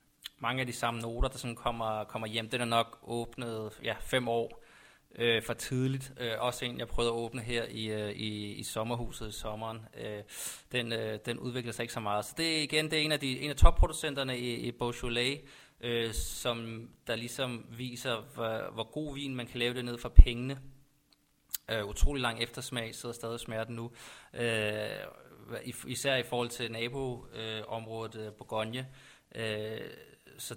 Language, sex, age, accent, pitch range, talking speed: Danish, male, 20-39, native, 115-135 Hz, 185 wpm